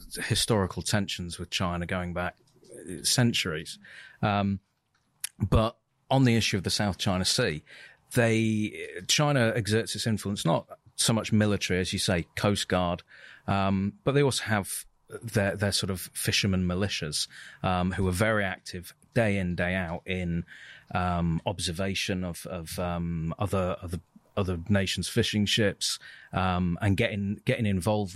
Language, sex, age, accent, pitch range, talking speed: English, male, 30-49, British, 90-105 Hz, 145 wpm